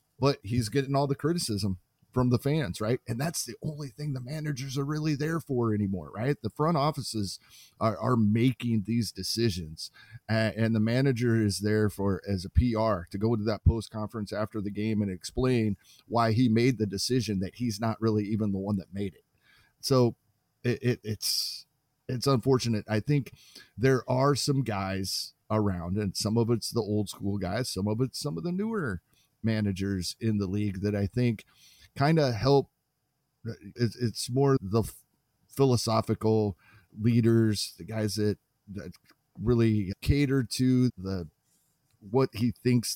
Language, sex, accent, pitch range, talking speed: English, male, American, 105-130 Hz, 170 wpm